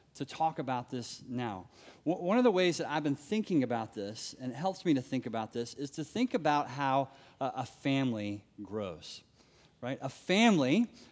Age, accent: 30-49, American